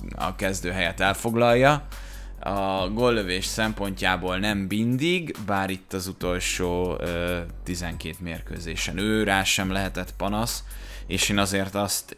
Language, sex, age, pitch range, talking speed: Hungarian, male, 20-39, 90-100 Hz, 125 wpm